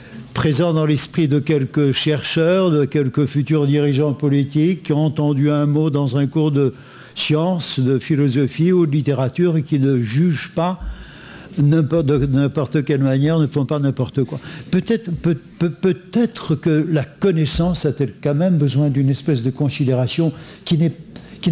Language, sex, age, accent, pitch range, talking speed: French, male, 60-79, French, 140-175 Hz, 150 wpm